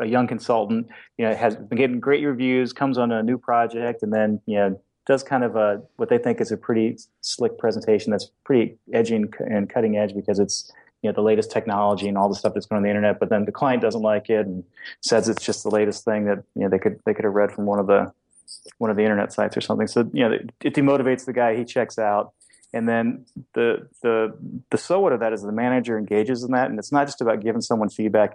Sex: male